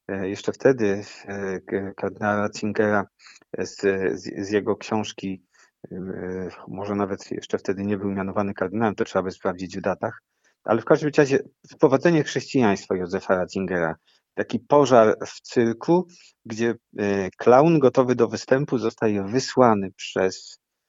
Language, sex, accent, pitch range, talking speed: Polish, male, native, 100-125 Hz, 125 wpm